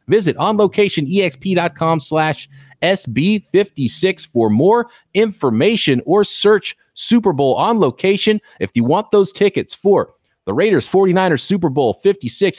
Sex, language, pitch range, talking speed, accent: male, English, 130-200 Hz, 115 wpm, American